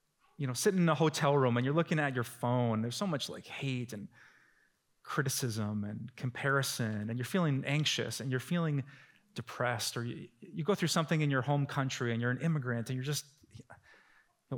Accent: American